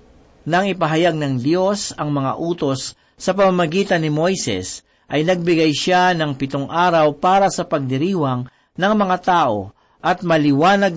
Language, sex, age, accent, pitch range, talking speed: Filipino, male, 50-69, native, 140-190 Hz, 135 wpm